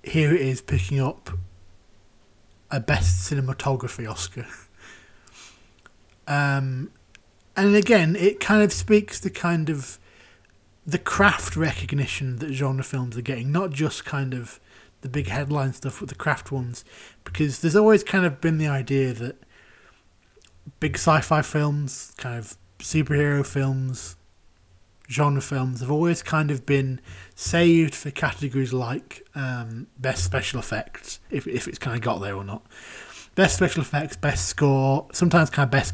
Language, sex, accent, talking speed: English, male, British, 145 wpm